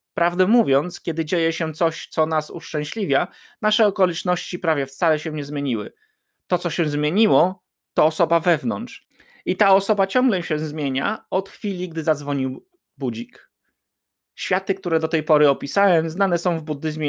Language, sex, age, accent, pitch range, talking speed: Polish, male, 30-49, native, 155-180 Hz, 155 wpm